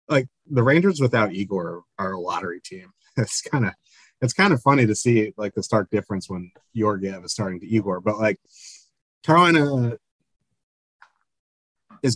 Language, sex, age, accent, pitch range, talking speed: English, male, 30-49, American, 105-130 Hz, 160 wpm